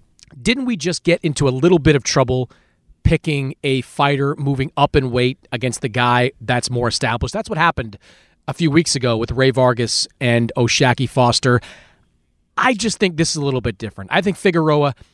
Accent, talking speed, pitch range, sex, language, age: American, 190 wpm, 120-160 Hz, male, English, 30-49